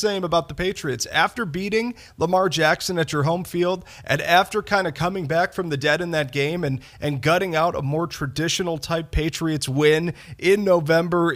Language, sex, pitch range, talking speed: English, male, 140-175 Hz, 190 wpm